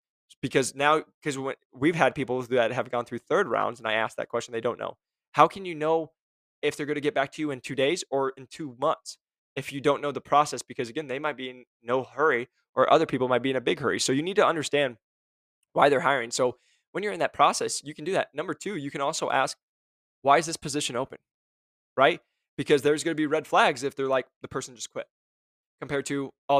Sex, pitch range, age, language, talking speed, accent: male, 125-150 Hz, 10-29, English, 245 wpm, American